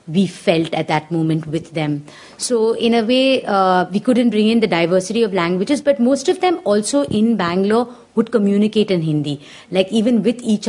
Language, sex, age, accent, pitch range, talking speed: English, female, 50-69, Indian, 170-215 Hz, 195 wpm